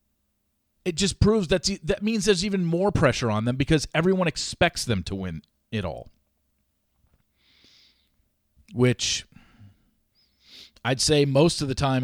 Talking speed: 130 wpm